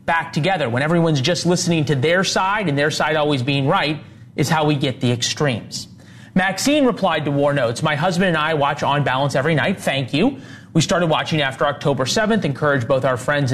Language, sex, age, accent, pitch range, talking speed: English, male, 30-49, American, 135-170 Hz, 210 wpm